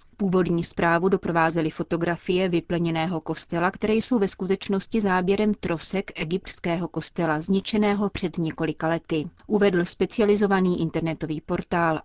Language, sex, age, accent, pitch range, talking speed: Czech, female, 30-49, native, 165-200 Hz, 110 wpm